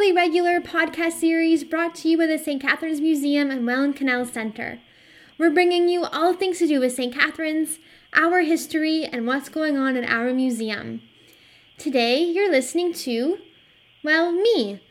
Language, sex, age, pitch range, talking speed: English, female, 10-29, 245-315 Hz, 160 wpm